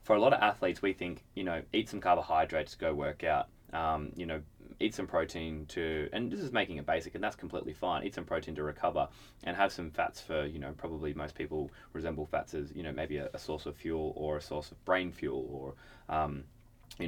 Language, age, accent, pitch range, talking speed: English, 20-39, Australian, 80-110 Hz, 235 wpm